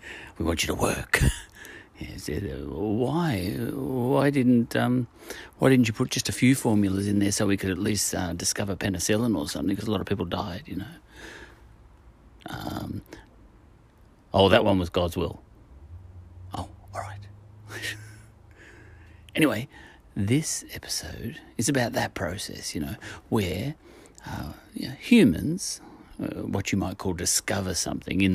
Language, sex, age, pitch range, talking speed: English, male, 40-59, 90-110 Hz, 150 wpm